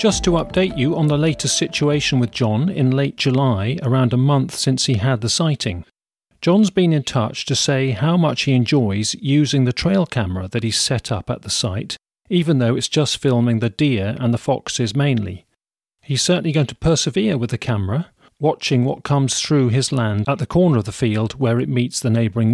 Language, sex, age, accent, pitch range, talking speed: English, male, 40-59, British, 120-160 Hz, 210 wpm